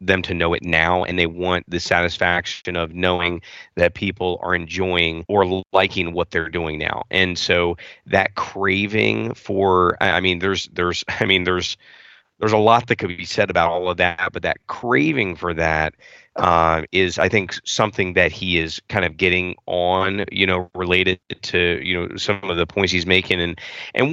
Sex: male